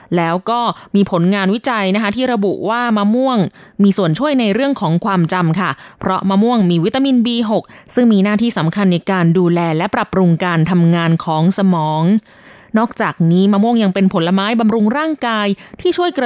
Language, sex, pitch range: Thai, female, 185-245 Hz